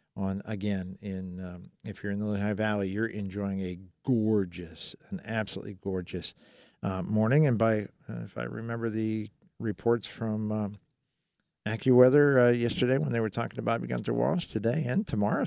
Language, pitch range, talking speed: English, 100-125 Hz, 165 wpm